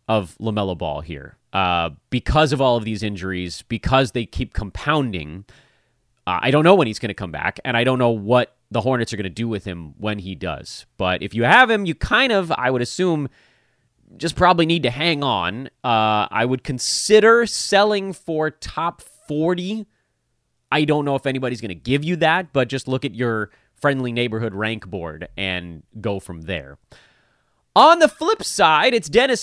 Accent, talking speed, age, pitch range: American, 195 wpm, 30-49, 105-150 Hz